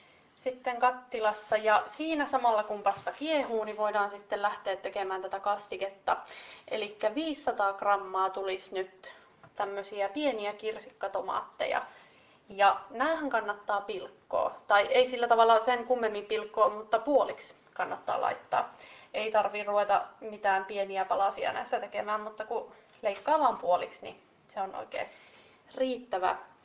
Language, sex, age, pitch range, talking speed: Finnish, female, 30-49, 200-250 Hz, 125 wpm